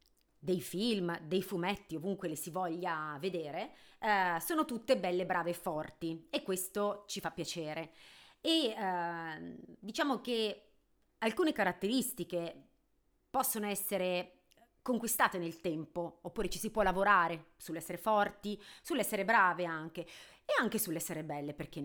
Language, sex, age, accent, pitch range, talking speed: Italian, female, 30-49, native, 170-220 Hz, 130 wpm